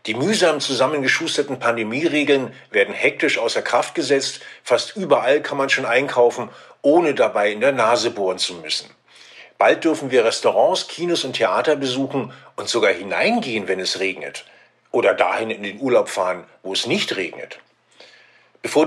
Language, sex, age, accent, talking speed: German, male, 50-69, German, 155 wpm